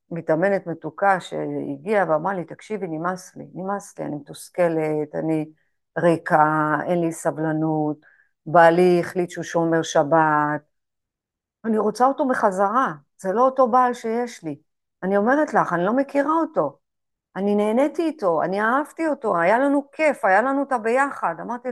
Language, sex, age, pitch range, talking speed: Hebrew, female, 50-69, 175-255 Hz, 145 wpm